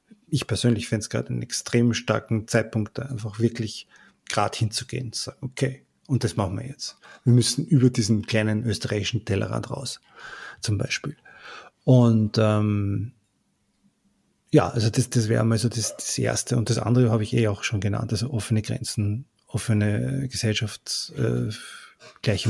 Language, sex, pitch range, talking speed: German, male, 110-125 Hz, 165 wpm